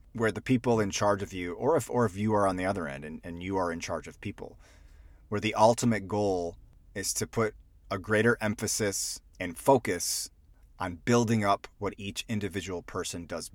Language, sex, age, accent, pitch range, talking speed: English, male, 30-49, American, 90-120 Hz, 200 wpm